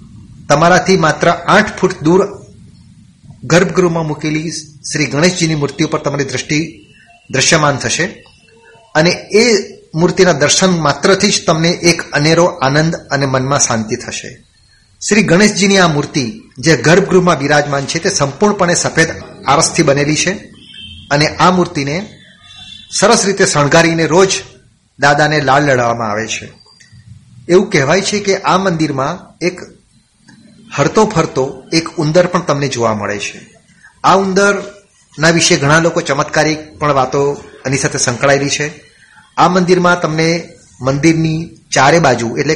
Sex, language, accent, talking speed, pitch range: male, Gujarati, native, 125 wpm, 140-175 Hz